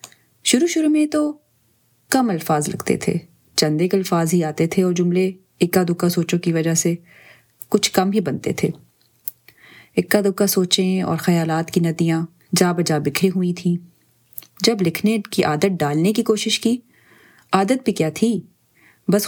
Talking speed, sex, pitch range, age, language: 160 wpm, female, 160-195 Hz, 30-49, Urdu